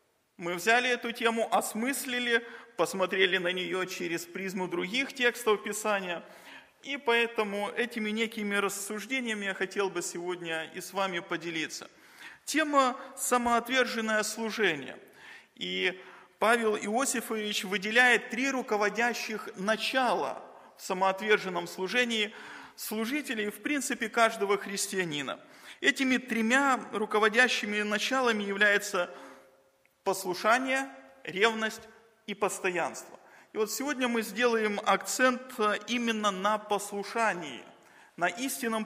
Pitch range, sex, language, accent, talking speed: 200-245 Hz, male, Russian, native, 100 wpm